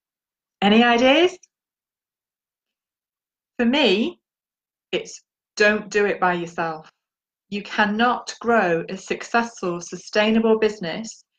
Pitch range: 190-245 Hz